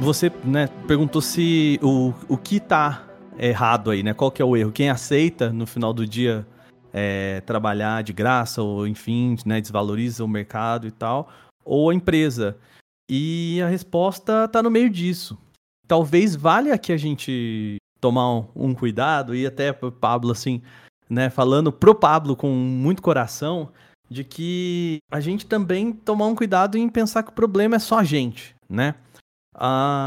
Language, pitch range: Portuguese, 125-195 Hz